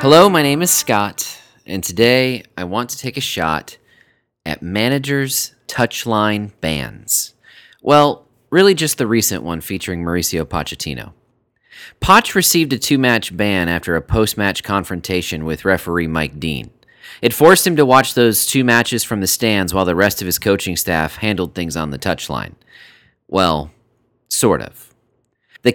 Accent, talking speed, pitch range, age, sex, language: American, 155 wpm, 95-140 Hz, 30-49, male, English